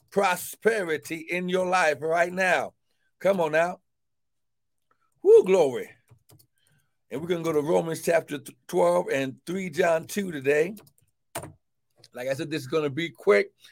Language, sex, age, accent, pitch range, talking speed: English, male, 60-79, American, 150-205 Hz, 140 wpm